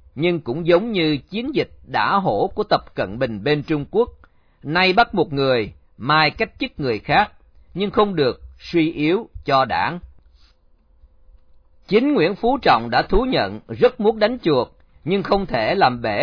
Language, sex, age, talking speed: Vietnamese, male, 40-59, 175 wpm